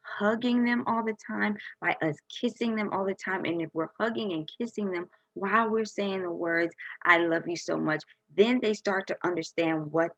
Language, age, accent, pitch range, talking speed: English, 20-39, American, 160-200 Hz, 205 wpm